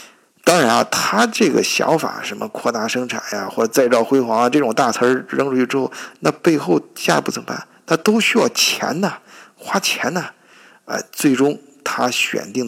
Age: 50-69